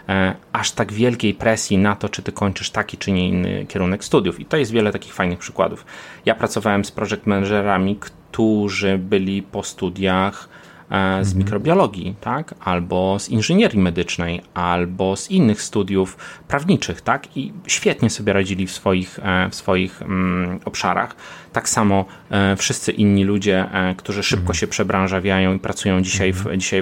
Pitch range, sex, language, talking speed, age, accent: 95-110 Hz, male, Polish, 145 wpm, 30-49, native